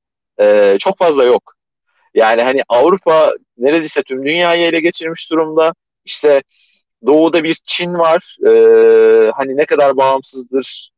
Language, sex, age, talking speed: Turkish, male, 40-59, 125 wpm